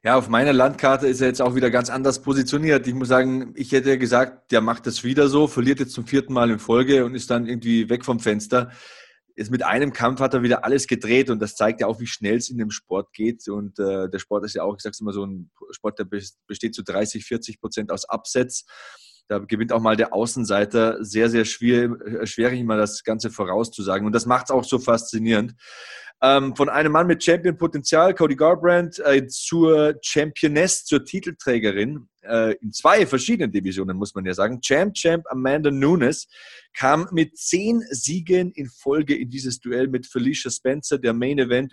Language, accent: German, German